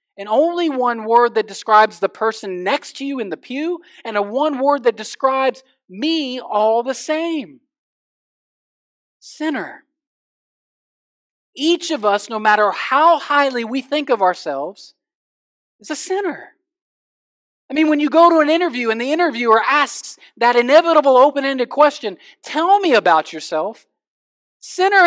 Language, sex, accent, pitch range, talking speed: English, male, American, 240-315 Hz, 145 wpm